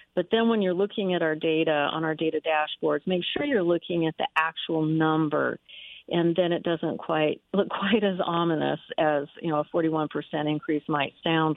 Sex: female